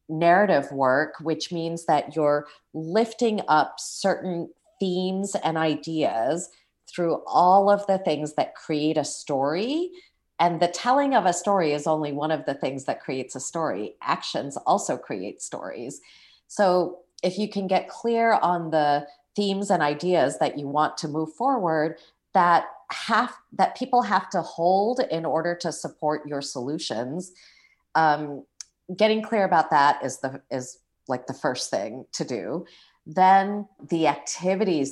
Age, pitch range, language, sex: 40-59, 150-185 Hz, English, female